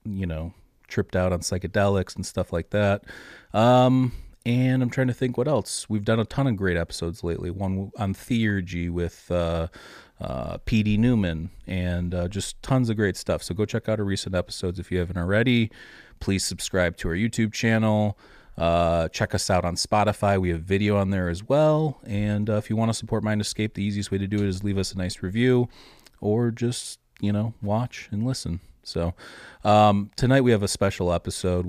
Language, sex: English, male